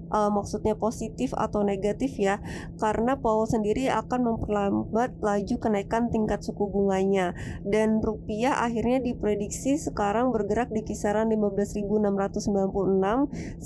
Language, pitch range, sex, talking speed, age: Indonesian, 210-235 Hz, female, 110 wpm, 20-39